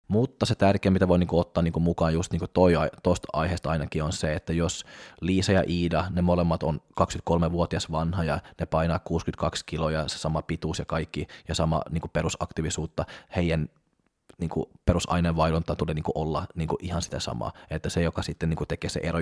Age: 20-39